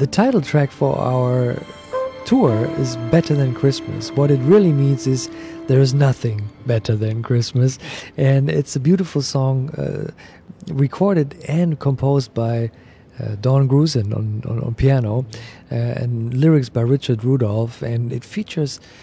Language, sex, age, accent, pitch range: Chinese, male, 50-69, German, 115-140 Hz